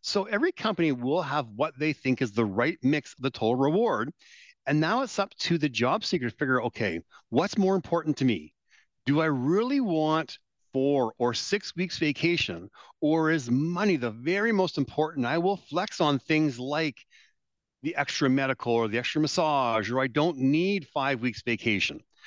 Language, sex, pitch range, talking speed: English, male, 130-190 Hz, 185 wpm